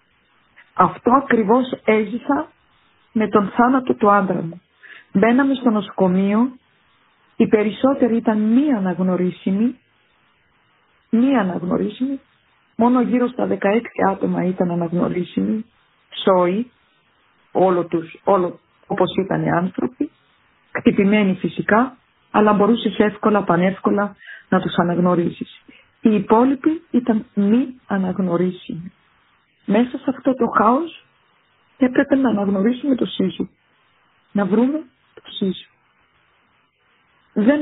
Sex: female